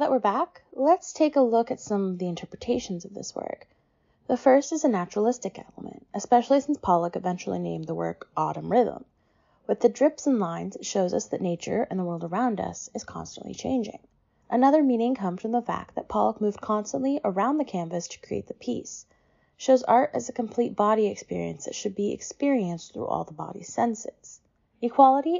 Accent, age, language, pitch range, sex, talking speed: American, 20-39, English, 185-250 Hz, female, 195 wpm